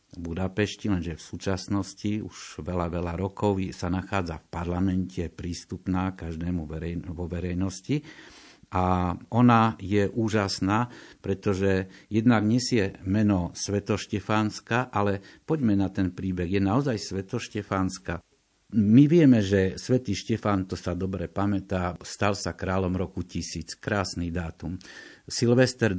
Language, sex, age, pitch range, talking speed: Slovak, male, 50-69, 90-110 Hz, 120 wpm